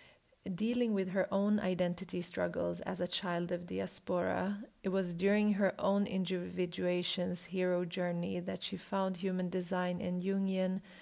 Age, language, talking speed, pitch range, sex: 40-59, English, 140 wpm, 180-195 Hz, female